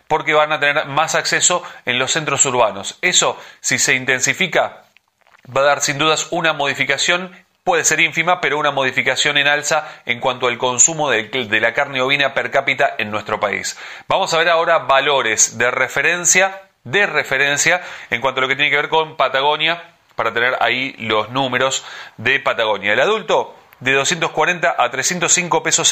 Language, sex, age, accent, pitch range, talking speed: Spanish, male, 30-49, Argentinian, 135-165 Hz, 175 wpm